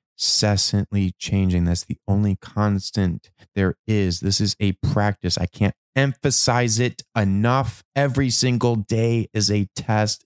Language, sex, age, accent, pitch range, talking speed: English, male, 20-39, American, 90-115 Hz, 135 wpm